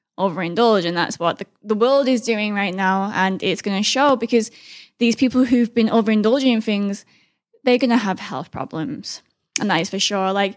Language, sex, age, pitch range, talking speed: English, female, 10-29, 195-255 Hz, 205 wpm